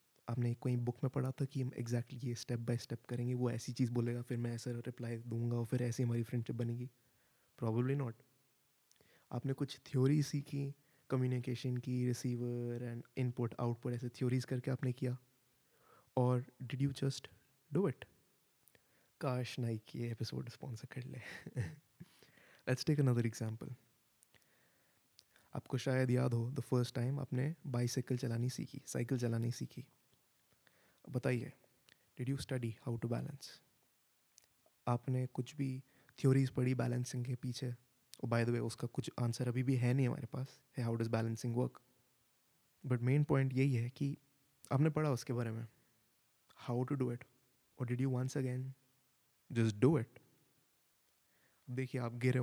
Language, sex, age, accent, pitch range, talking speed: Hindi, male, 20-39, native, 120-130 Hz, 155 wpm